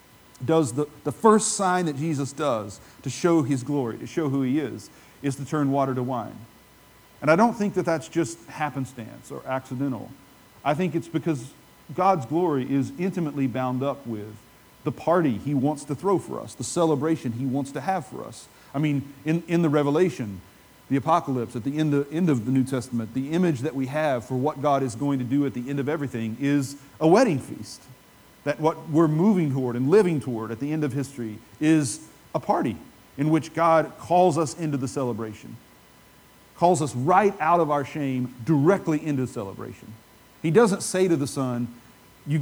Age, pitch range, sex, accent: 40-59, 130-165 Hz, male, American